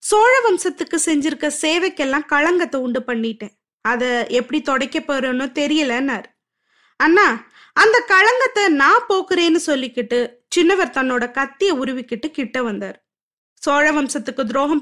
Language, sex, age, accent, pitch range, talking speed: Tamil, female, 20-39, native, 265-365 Hz, 110 wpm